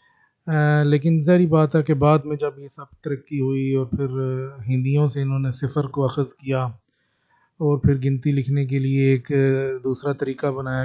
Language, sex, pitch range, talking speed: Urdu, male, 135-170 Hz, 170 wpm